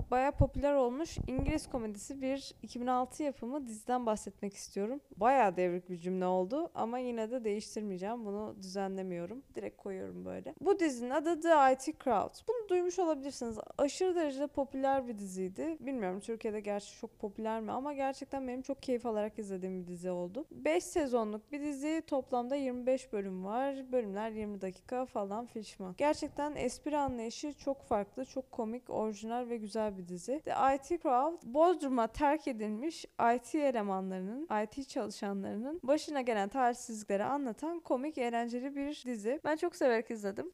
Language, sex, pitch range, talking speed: Turkish, female, 220-295 Hz, 150 wpm